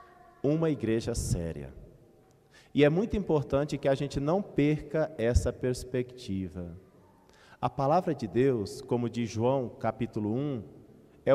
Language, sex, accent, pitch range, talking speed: Portuguese, male, Brazilian, 110-155 Hz, 125 wpm